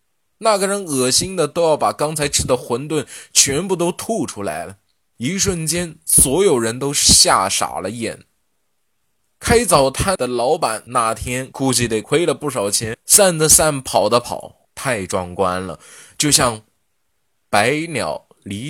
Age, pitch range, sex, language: 20-39, 110-160 Hz, male, Chinese